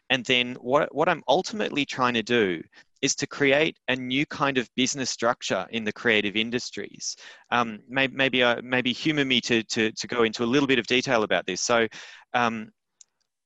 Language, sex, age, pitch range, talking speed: English, male, 30-49, 115-135 Hz, 190 wpm